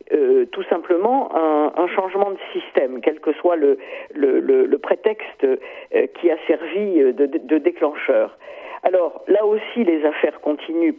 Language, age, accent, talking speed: French, 50-69, French, 145 wpm